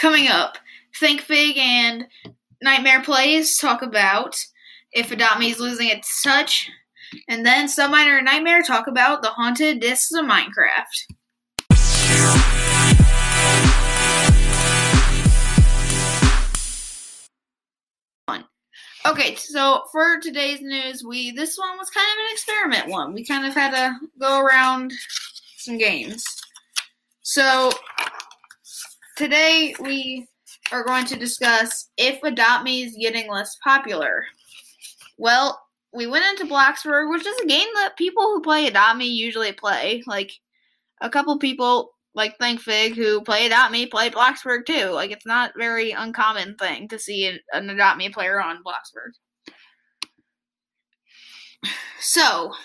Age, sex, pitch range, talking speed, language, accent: 10-29, female, 230-290 Hz, 125 wpm, English, American